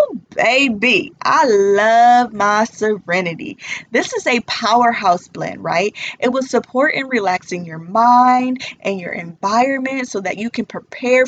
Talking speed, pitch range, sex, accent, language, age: 150 wpm, 195-250 Hz, female, American, English, 20-39